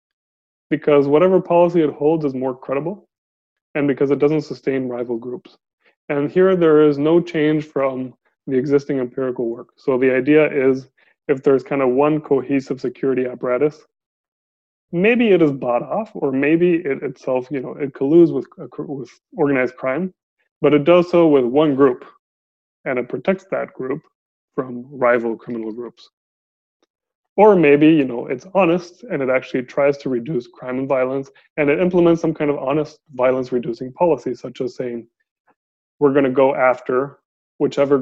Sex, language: male, English